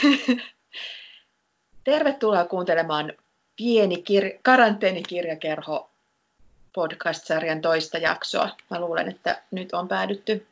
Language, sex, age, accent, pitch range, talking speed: Finnish, female, 30-49, native, 170-215 Hz, 80 wpm